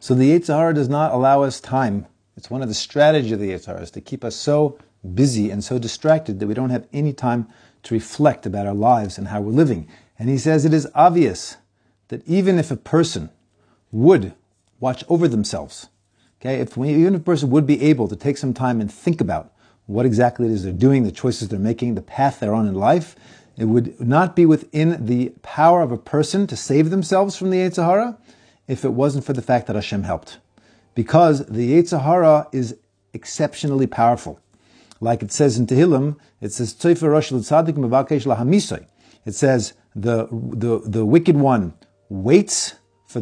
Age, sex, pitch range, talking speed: 40-59, male, 110-150 Hz, 185 wpm